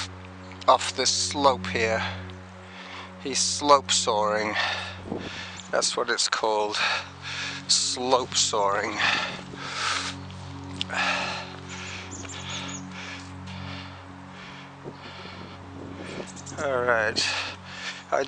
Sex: male